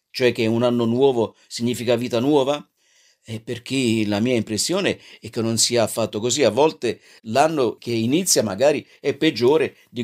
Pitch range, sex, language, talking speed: 110-150 Hz, male, Italian, 165 wpm